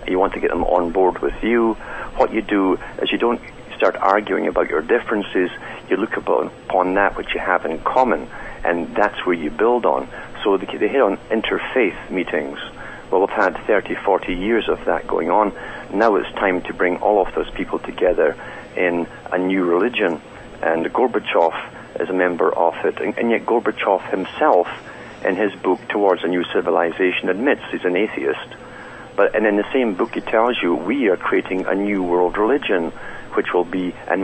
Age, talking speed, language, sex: 60-79, 190 wpm, English, male